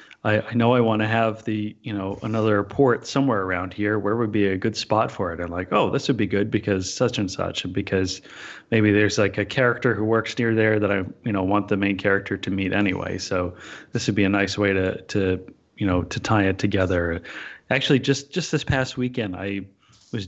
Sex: male